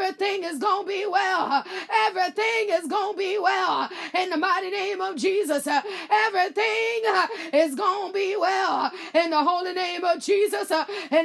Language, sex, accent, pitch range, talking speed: English, female, American, 360-410 Hz, 165 wpm